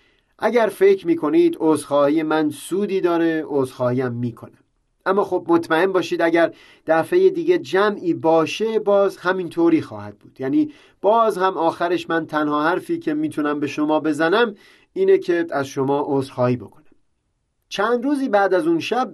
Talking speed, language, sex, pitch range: 145 wpm, Persian, male, 155-255 Hz